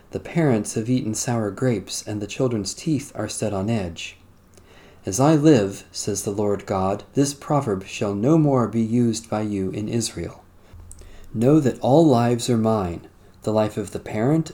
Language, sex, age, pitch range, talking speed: English, male, 40-59, 100-135 Hz, 180 wpm